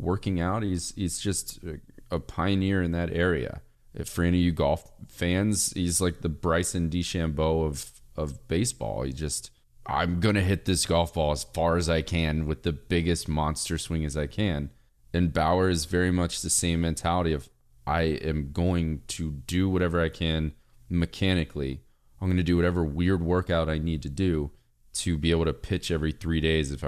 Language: English